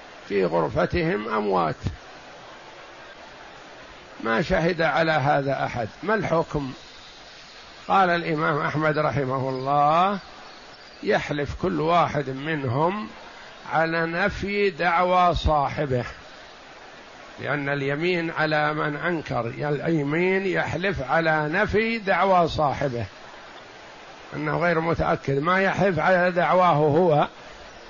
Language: Arabic